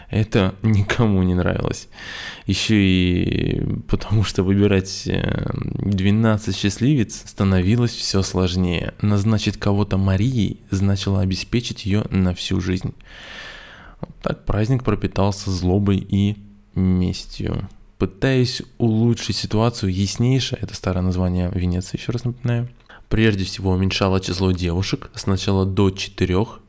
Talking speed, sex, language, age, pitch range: 110 wpm, male, Russian, 20-39, 95-110 Hz